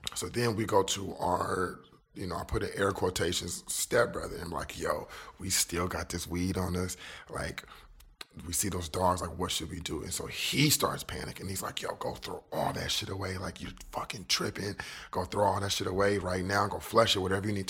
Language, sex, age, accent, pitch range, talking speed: English, male, 30-49, American, 90-100 Hz, 225 wpm